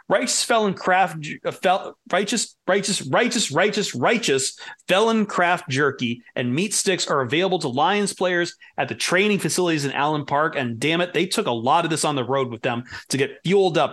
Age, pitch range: 30-49, 140-195 Hz